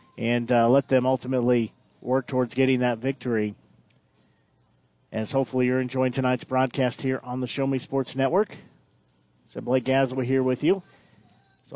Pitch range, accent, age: 120-145 Hz, American, 40-59